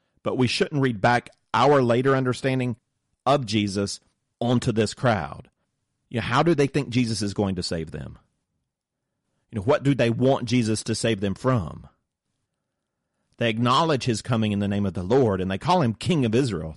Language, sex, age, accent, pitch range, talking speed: English, male, 40-59, American, 105-135 Hz, 175 wpm